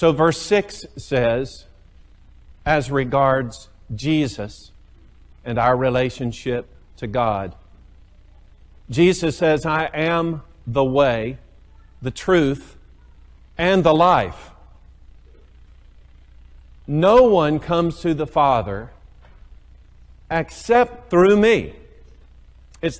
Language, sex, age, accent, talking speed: English, male, 50-69, American, 85 wpm